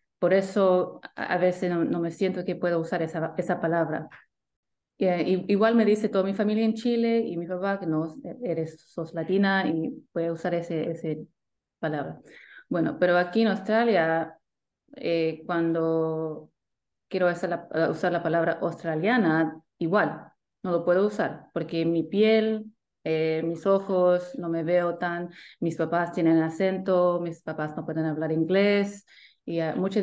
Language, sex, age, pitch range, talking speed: Spanish, female, 30-49, 165-210 Hz, 155 wpm